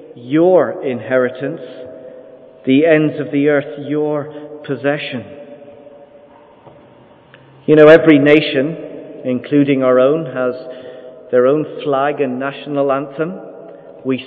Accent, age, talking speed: British, 50-69, 100 wpm